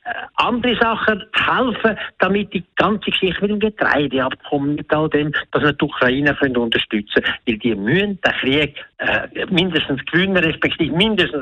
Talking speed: 160 wpm